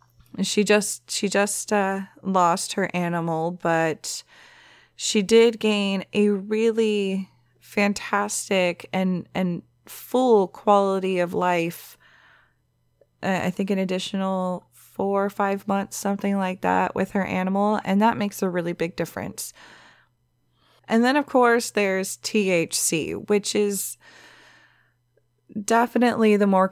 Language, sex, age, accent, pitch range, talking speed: English, female, 20-39, American, 175-215 Hz, 120 wpm